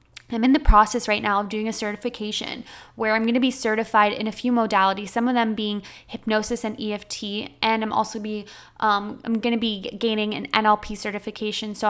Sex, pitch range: female, 210-235 Hz